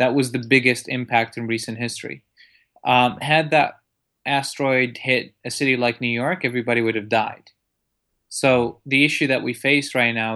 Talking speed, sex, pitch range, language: 175 wpm, male, 115-130 Hz, German